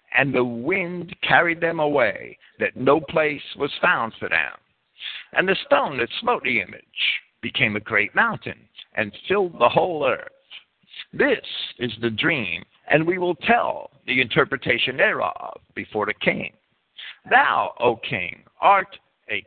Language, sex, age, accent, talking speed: English, male, 60-79, American, 150 wpm